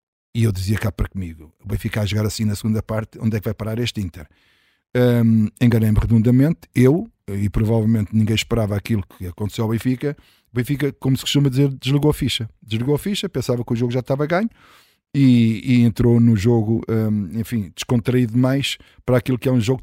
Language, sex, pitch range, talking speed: Portuguese, male, 110-125 Hz, 205 wpm